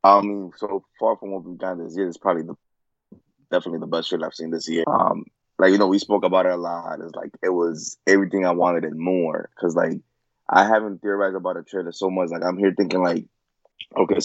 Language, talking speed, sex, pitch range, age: English, 240 wpm, male, 85-100 Hz, 20-39